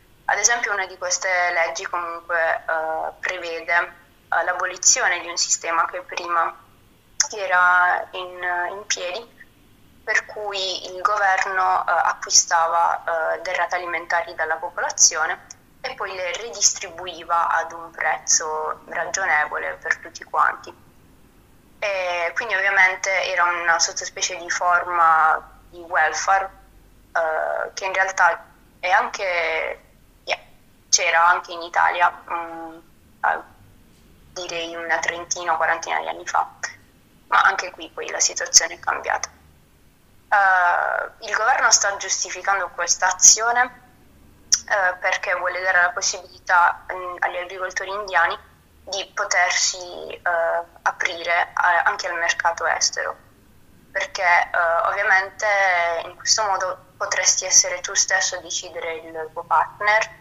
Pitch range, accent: 170-190 Hz, native